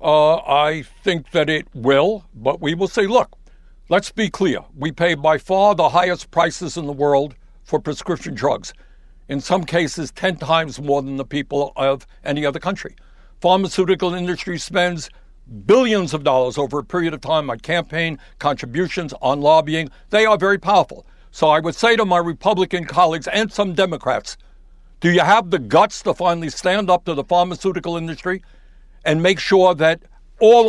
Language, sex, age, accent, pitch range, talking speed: English, male, 60-79, American, 155-190 Hz, 175 wpm